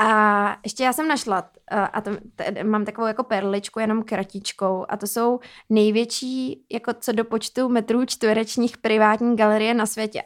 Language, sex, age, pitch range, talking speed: Czech, female, 20-39, 200-230 Hz, 170 wpm